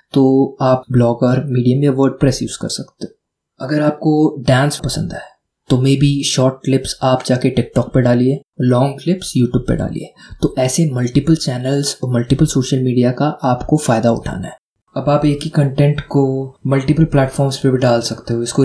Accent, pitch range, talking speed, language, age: native, 125-145 Hz, 185 wpm, Hindi, 20-39